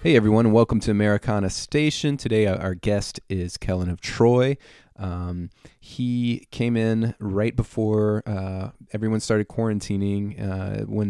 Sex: male